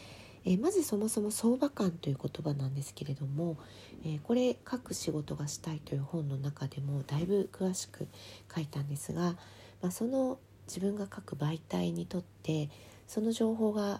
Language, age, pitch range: Japanese, 40-59, 130-175 Hz